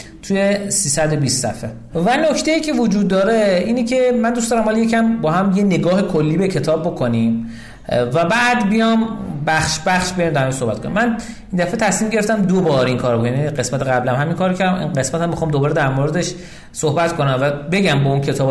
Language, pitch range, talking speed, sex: Persian, 135-205 Hz, 200 wpm, male